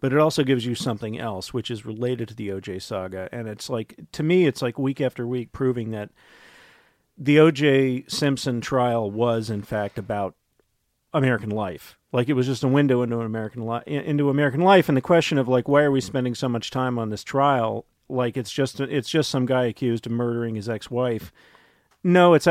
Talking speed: 210 wpm